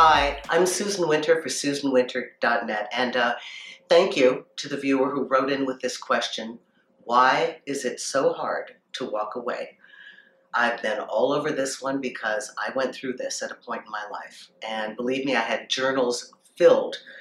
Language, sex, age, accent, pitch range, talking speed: English, female, 50-69, American, 125-155 Hz, 180 wpm